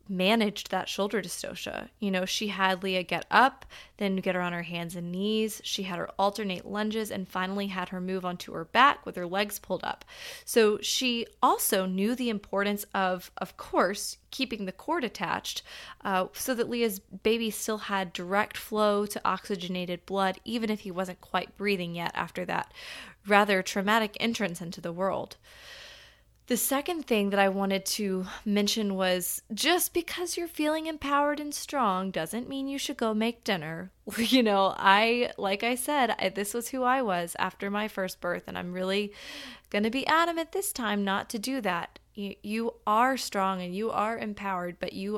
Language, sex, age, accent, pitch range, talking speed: English, female, 20-39, American, 185-230 Hz, 185 wpm